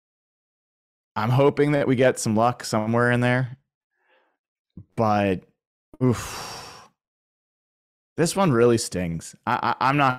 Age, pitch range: 20-39, 95-130 Hz